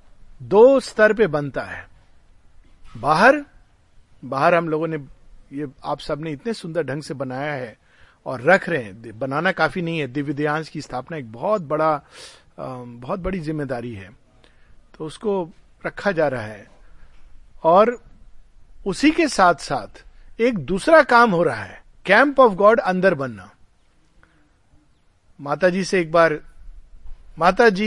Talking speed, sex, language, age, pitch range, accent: 140 wpm, male, Hindi, 50-69, 140-205 Hz, native